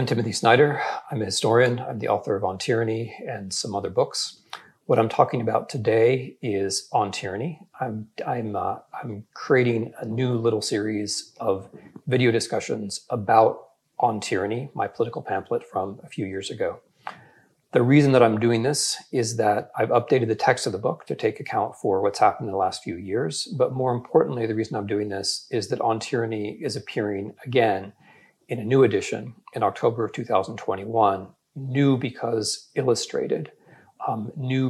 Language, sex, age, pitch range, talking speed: English, male, 40-59, 105-130 Hz, 175 wpm